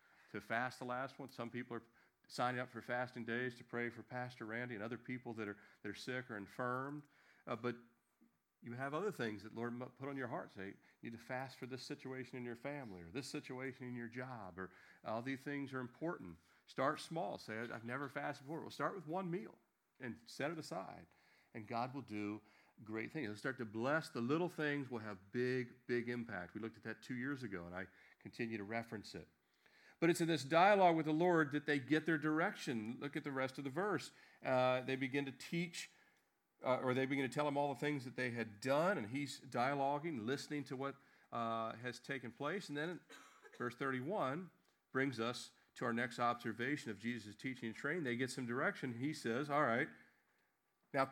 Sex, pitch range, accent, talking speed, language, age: male, 115-140 Hz, American, 215 wpm, English, 40-59